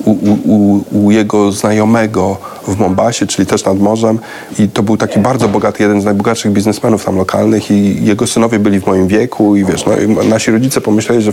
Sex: male